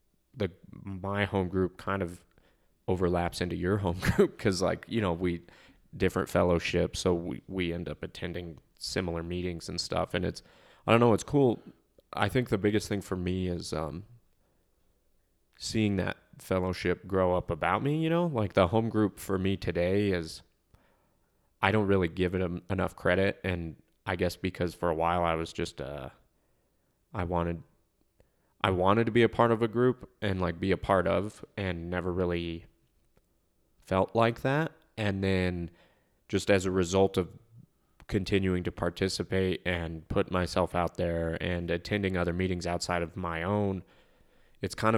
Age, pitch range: 20-39, 85-100 Hz